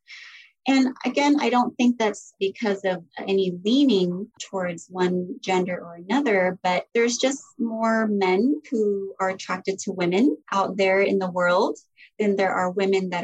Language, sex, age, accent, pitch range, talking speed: English, female, 30-49, American, 185-220 Hz, 160 wpm